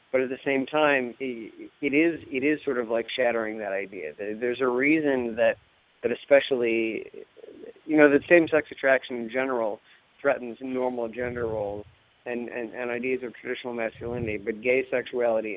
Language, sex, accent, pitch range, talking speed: English, male, American, 115-140 Hz, 160 wpm